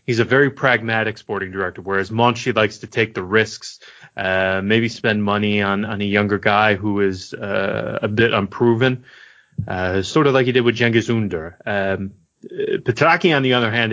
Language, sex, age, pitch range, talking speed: English, male, 30-49, 100-120 Hz, 185 wpm